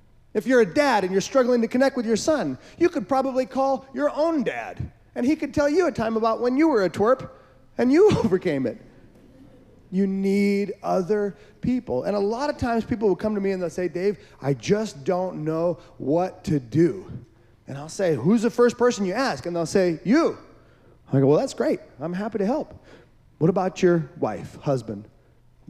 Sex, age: male, 30-49